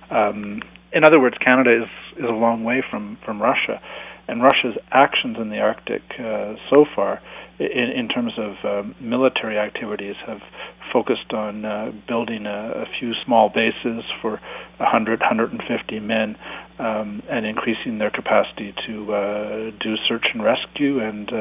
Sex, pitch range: male, 105-115 Hz